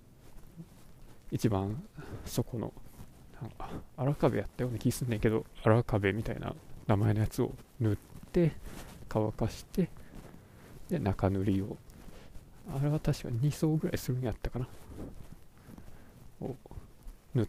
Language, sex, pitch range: Japanese, male, 105-145 Hz